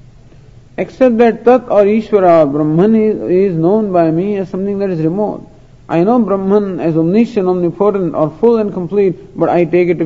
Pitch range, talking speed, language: 140-210 Hz, 185 wpm, English